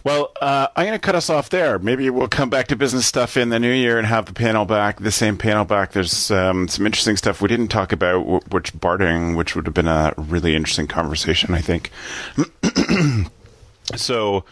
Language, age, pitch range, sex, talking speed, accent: English, 30-49, 85-105 Hz, male, 210 wpm, American